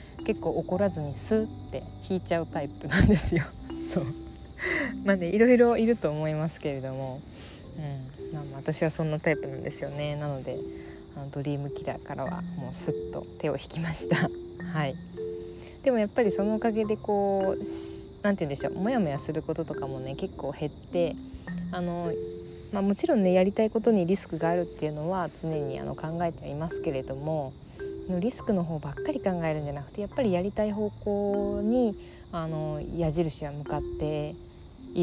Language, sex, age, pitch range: Japanese, female, 20-39, 110-180 Hz